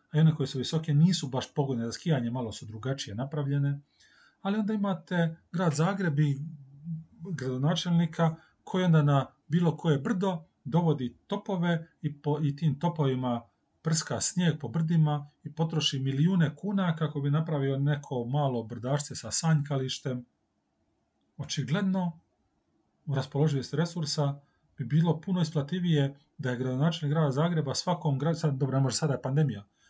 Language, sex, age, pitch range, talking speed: Croatian, male, 30-49, 135-165 Hz, 135 wpm